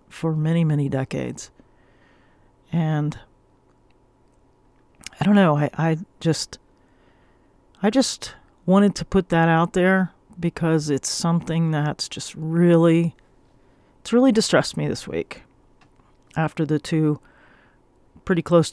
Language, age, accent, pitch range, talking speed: English, 40-59, American, 145-165 Hz, 115 wpm